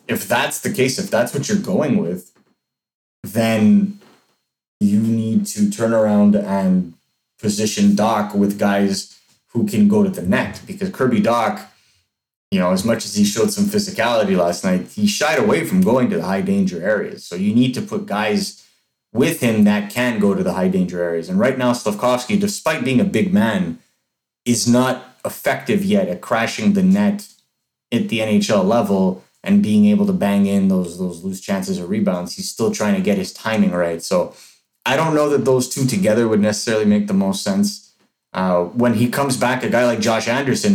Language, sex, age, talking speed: English, male, 30-49, 195 wpm